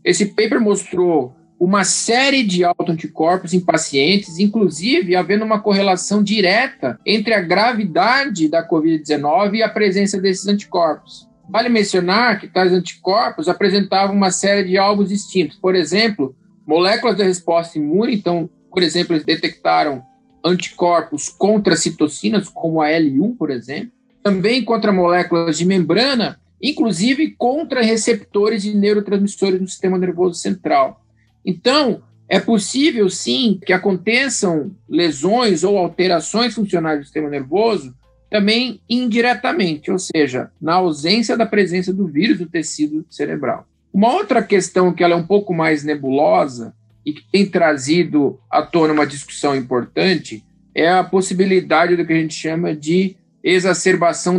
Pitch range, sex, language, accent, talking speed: 170-210 Hz, male, Portuguese, Brazilian, 135 wpm